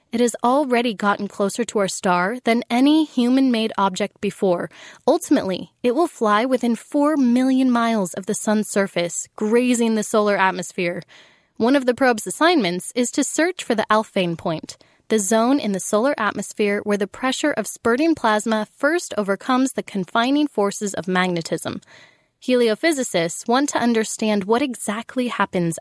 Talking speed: 155 wpm